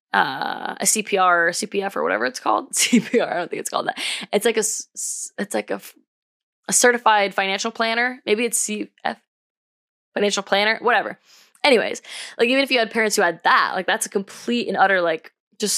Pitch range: 195-235 Hz